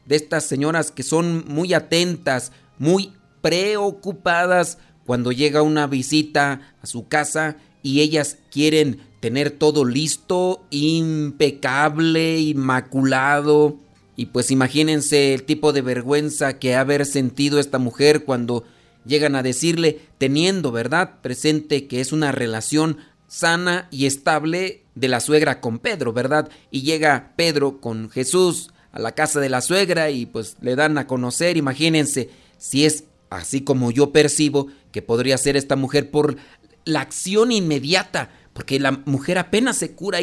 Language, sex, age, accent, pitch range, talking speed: Spanish, male, 40-59, Mexican, 135-160 Hz, 145 wpm